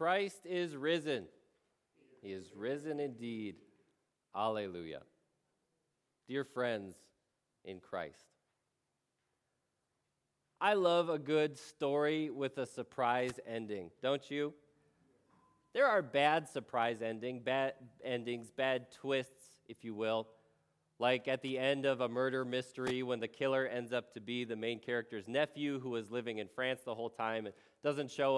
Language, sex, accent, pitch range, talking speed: English, male, American, 110-145 Hz, 135 wpm